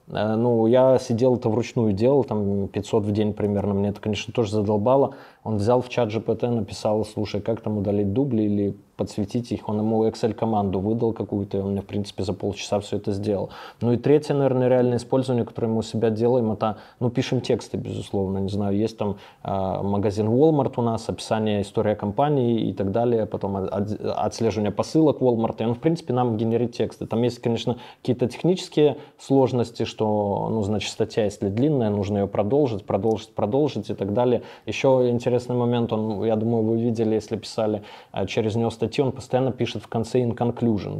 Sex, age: male, 20-39